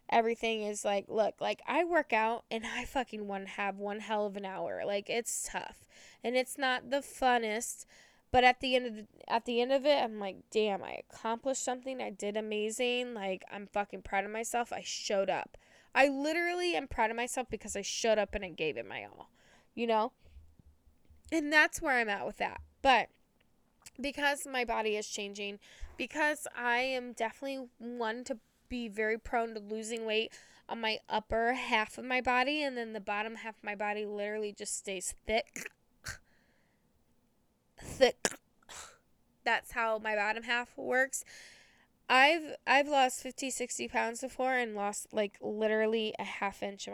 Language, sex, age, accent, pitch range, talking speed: English, female, 10-29, American, 210-260 Hz, 175 wpm